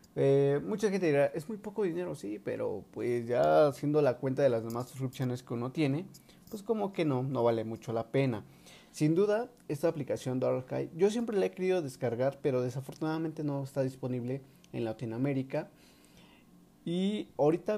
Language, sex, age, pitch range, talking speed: Spanish, male, 30-49, 115-155 Hz, 175 wpm